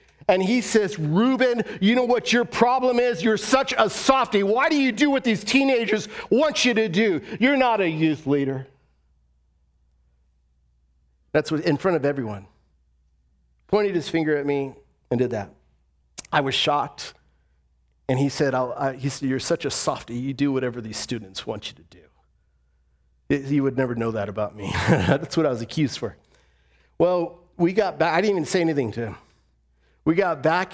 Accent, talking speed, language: American, 185 wpm, English